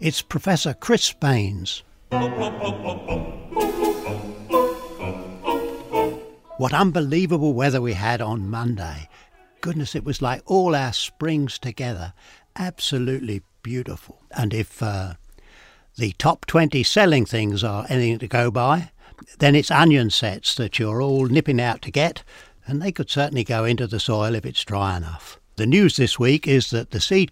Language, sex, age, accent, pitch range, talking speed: English, male, 60-79, British, 105-150 Hz, 145 wpm